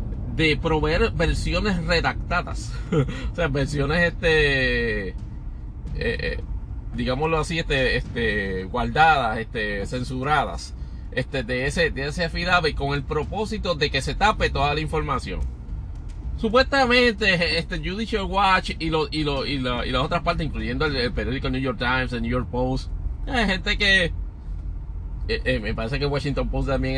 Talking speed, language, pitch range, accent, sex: 155 wpm, Spanish, 125-175 Hz, Venezuelan, male